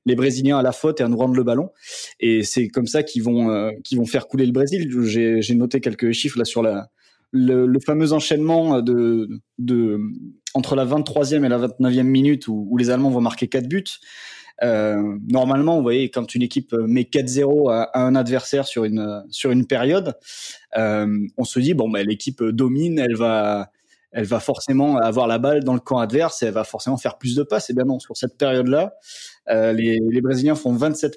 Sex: male